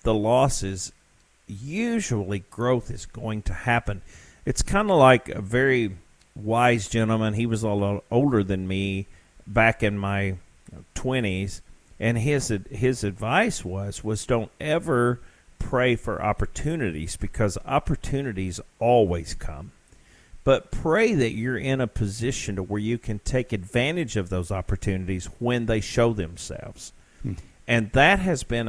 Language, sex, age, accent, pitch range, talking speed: English, male, 50-69, American, 95-120 Hz, 140 wpm